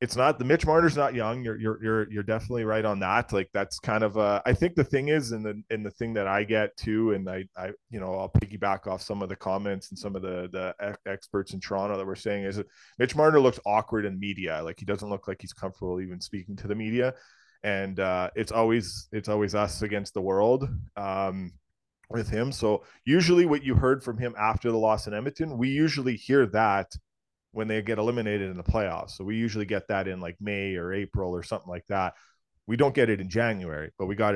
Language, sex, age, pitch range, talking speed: English, male, 20-39, 95-115 Hz, 240 wpm